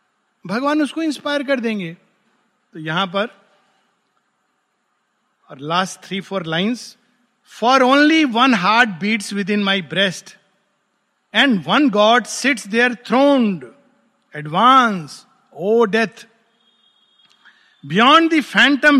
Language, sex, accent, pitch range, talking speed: Hindi, male, native, 175-225 Hz, 100 wpm